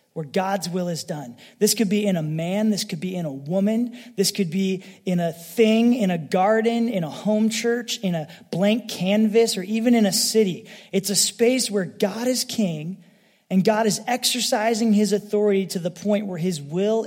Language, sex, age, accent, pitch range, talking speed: English, male, 30-49, American, 180-220 Hz, 205 wpm